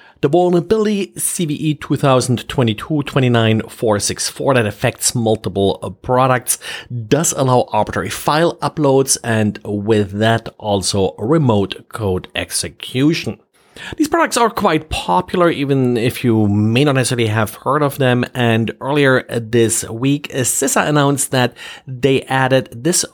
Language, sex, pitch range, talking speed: English, male, 110-140 Hz, 115 wpm